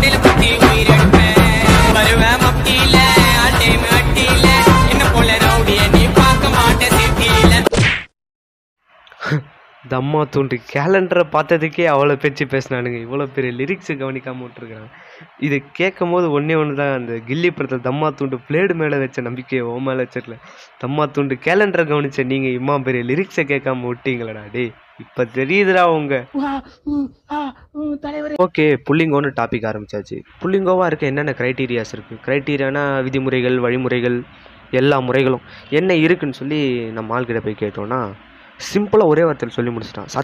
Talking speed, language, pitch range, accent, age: 90 wpm, Tamil, 120-160 Hz, native, 20-39